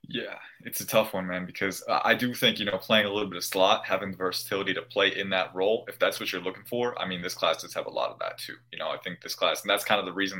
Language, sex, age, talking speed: English, male, 20-39, 315 wpm